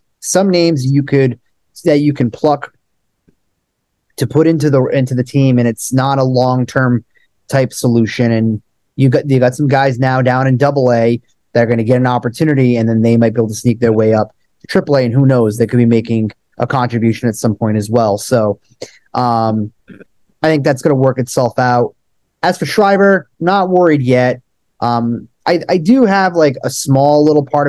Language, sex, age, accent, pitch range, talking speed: English, male, 30-49, American, 115-140 Hz, 205 wpm